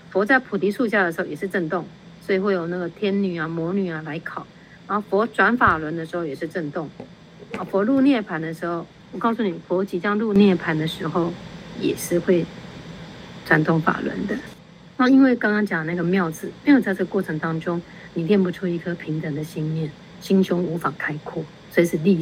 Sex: female